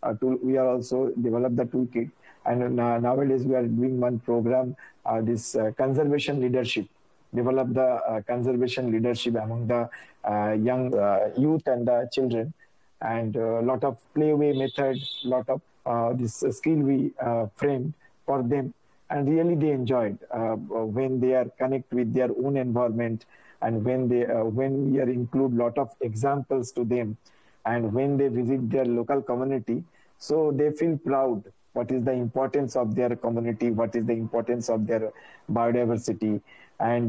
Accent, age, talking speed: Indian, 50-69, 175 wpm